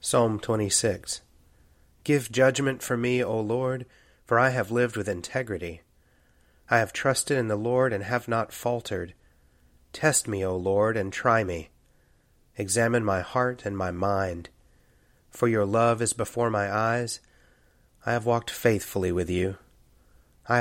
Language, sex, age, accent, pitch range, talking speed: English, male, 30-49, American, 95-120 Hz, 150 wpm